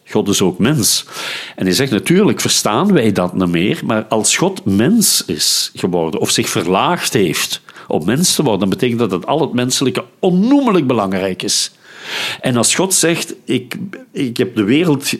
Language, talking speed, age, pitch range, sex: Dutch, 180 wpm, 50-69, 105-155 Hz, male